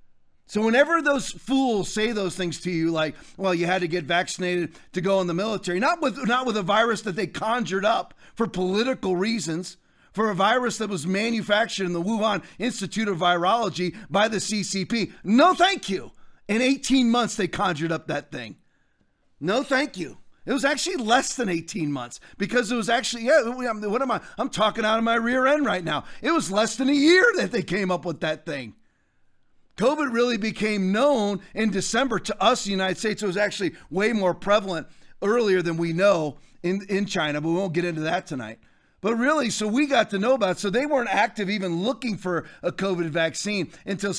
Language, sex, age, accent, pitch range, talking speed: English, male, 40-59, American, 185-245 Hz, 205 wpm